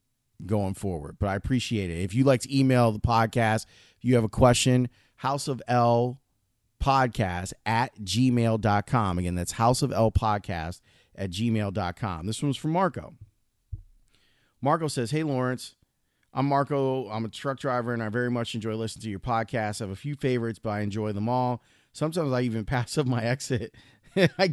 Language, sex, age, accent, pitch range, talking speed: English, male, 30-49, American, 105-130 Hz, 180 wpm